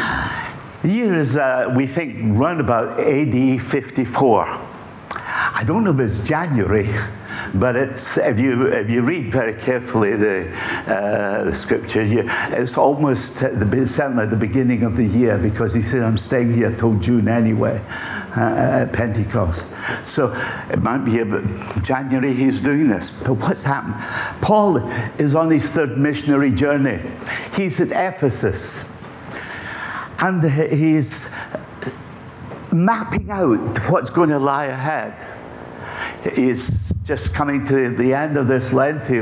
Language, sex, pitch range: English, male, 115-145 Hz